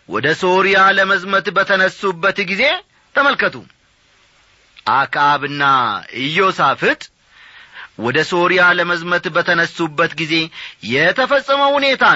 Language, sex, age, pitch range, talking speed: Amharic, male, 30-49, 165-240 Hz, 75 wpm